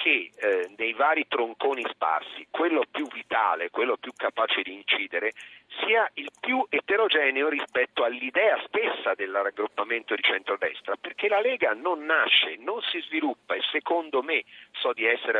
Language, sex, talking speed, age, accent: Italian, male, 150 wpm, 40-59, native